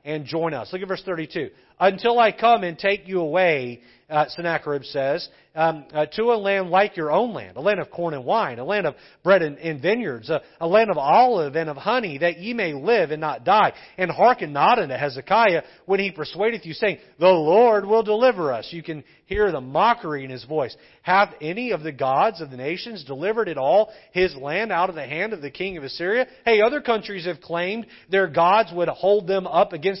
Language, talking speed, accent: English, 220 wpm, American